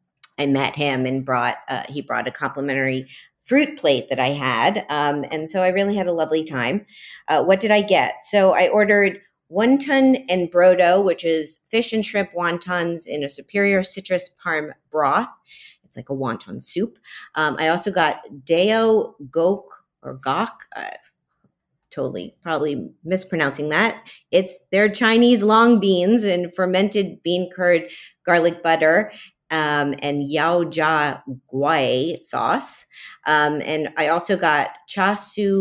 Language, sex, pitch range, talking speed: English, female, 140-190 Hz, 150 wpm